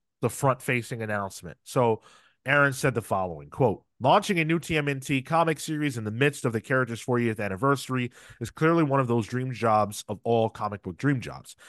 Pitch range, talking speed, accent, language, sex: 110-140 Hz, 185 wpm, American, English, male